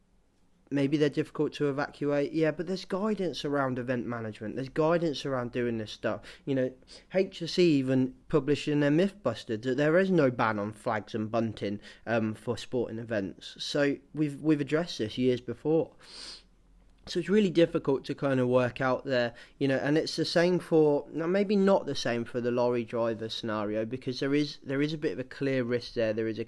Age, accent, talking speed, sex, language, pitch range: 20-39, British, 200 wpm, male, English, 115-150 Hz